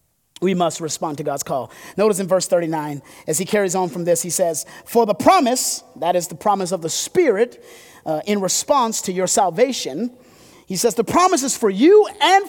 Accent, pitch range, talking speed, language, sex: American, 205-285 Hz, 200 wpm, English, male